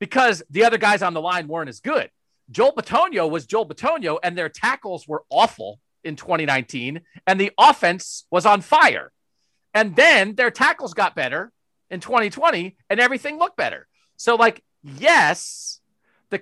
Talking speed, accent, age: 160 wpm, American, 40-59